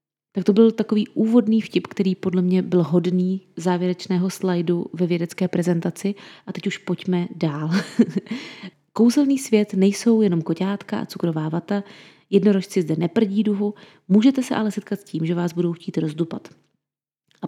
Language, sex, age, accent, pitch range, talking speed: Czech, female, 30-49, native, 175-210 Hz, 155 wpm